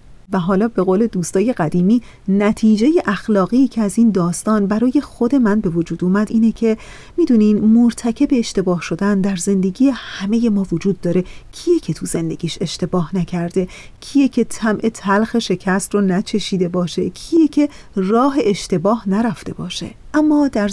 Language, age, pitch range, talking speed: Persian, 40-59, 190-235 Hz, 150 wpm